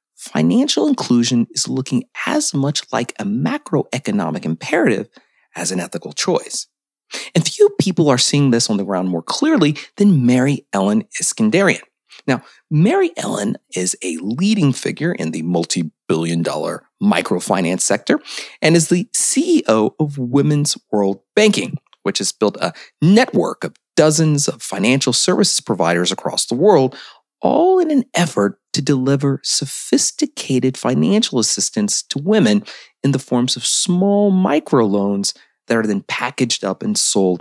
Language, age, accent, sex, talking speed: English, 30-49, American, male, 140 wpm